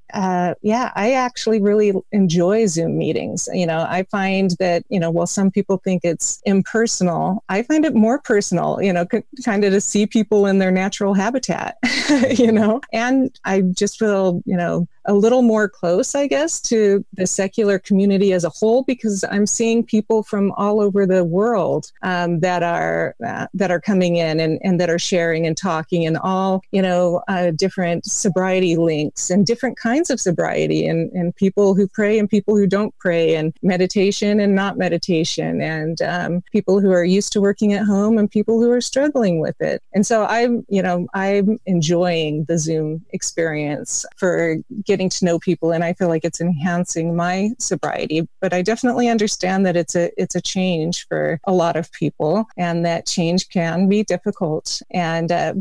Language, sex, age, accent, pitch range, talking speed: English, female, 40-59, American, 175-210 Hz, 190 wpm